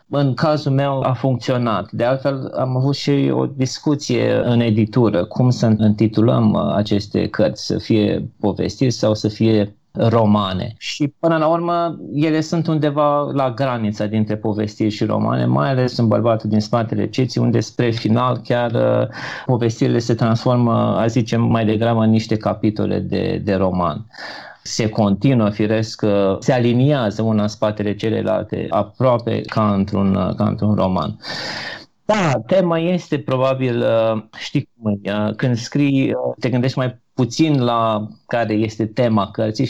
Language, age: Romanian, 30-49